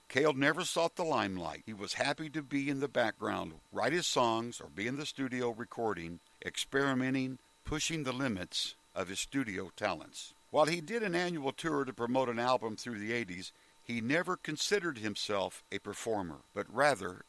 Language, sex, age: English, male, 60-79